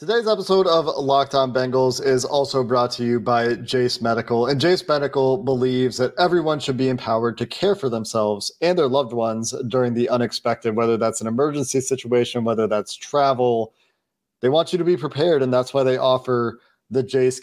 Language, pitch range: English, 120-140 Hz